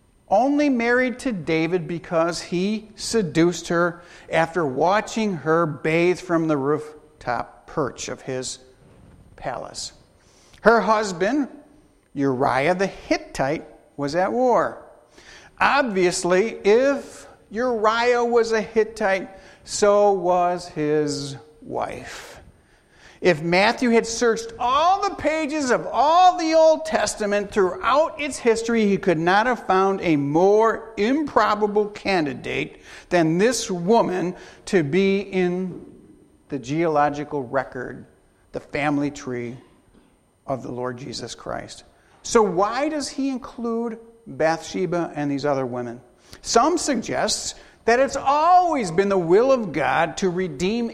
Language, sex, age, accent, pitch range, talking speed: English, male, 50-69, American, 165-235 Hz, 120 wpm